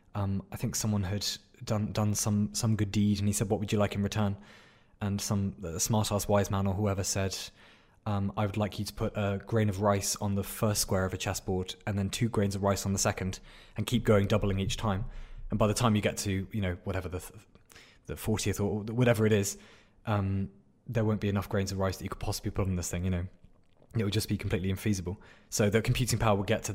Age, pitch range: 20-39, 100-110 Hz